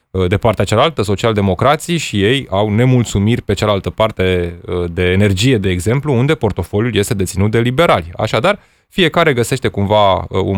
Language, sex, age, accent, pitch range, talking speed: Romanian, male, 20-39, native, 100-135 Hz, 145 wpm